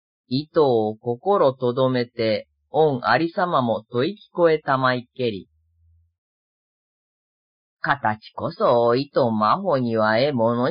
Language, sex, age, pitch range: Japanese, female, 40-59, 115-190 Hz